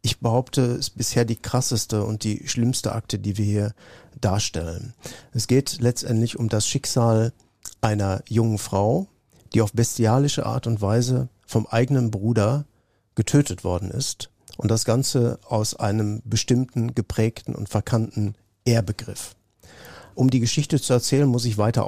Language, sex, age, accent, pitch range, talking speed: German, male, 50-69, German, 110-135 Hz, 150 wpm